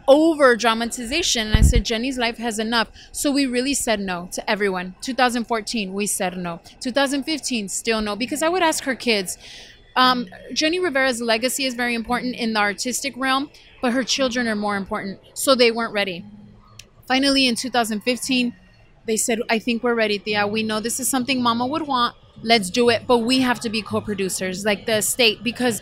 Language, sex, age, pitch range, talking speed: English, female, 30-49, 220-255 Hz, 190 wpm